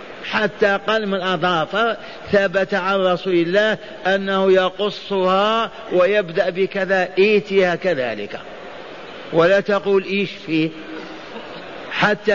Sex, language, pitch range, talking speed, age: male, Arabic, 165-200 Hz, 85 wpm, 50-69